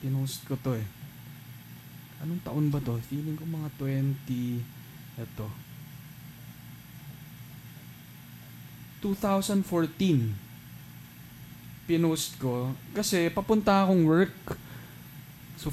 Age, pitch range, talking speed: 20-39, 130-170 Hz, 75 wpm